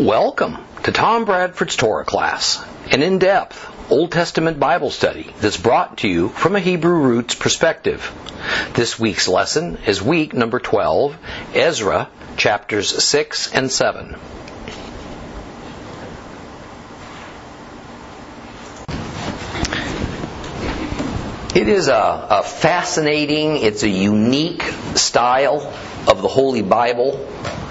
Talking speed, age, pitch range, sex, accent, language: 100 wpm, 50-69, 120-170 Hz, male, American, English